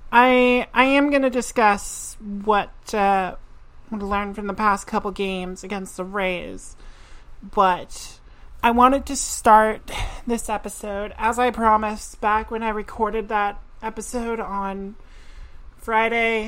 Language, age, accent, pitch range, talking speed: English, 30-49, American, 195-225 Hz, 130 wpm